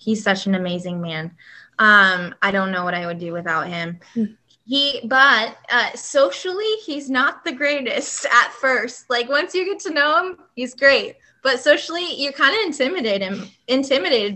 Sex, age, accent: female, 20-39, American